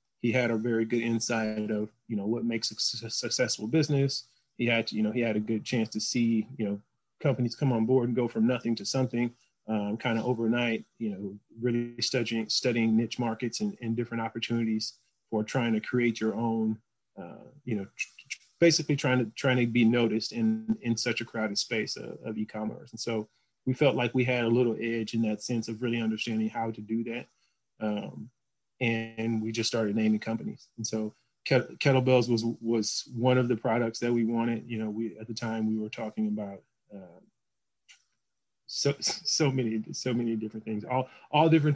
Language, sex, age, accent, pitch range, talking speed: English, male, 30-49, American, 110-125 Hz, 200 wpm